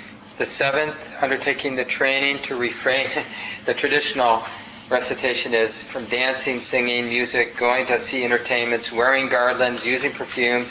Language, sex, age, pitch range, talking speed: English, male, 40-59, 120-140 Hz, 130 wpm